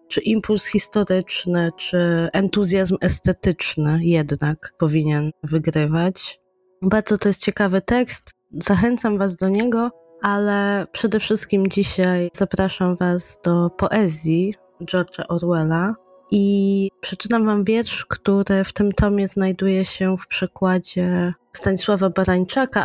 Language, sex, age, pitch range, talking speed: Polish, female, 20-39, 170-195 Hz, 110 wpm